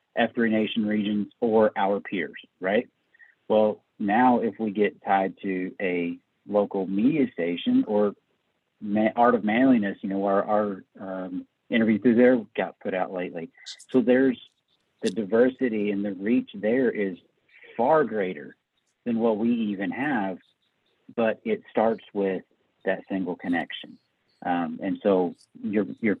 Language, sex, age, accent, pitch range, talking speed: English, male, 40-59, American, 100-125 Hz, 140 wpm